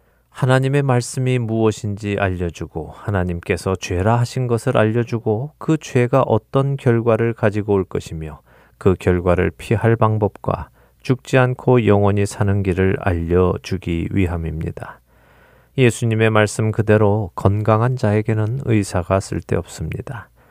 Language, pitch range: Korean, 90-115 Hz